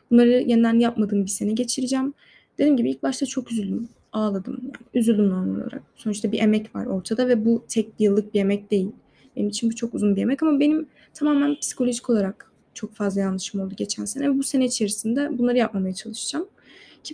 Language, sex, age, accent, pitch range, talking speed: Turkish, female, 10-29, native, 215-270 Hz, 195 wpm